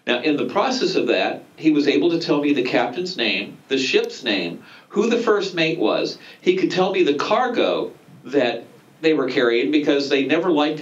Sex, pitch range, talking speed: male, 125-170 Hz, 205 wpm